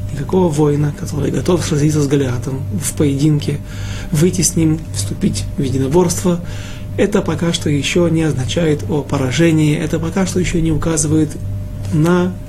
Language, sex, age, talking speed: Russian, male, 30-49, 145 wpm